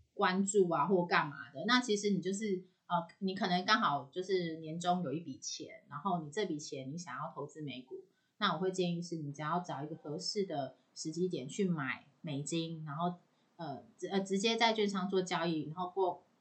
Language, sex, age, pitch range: Chinese, female, 30-49, 165-215 Hz